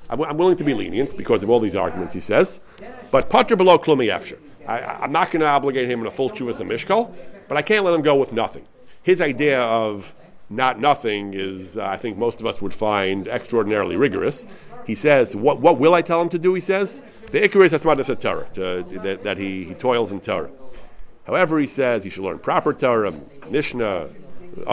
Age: 50-69